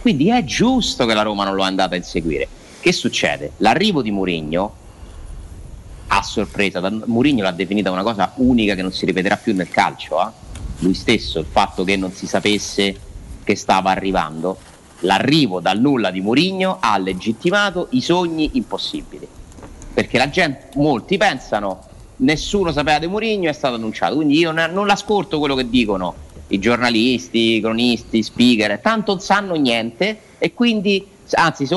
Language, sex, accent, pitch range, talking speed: Italian, male, native, 95-165 Hz, 160 wpm